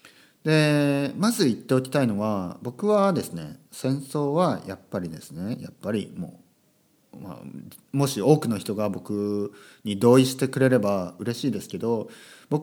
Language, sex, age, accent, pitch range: Japanese, male, 40-59, native, 130-195 Hz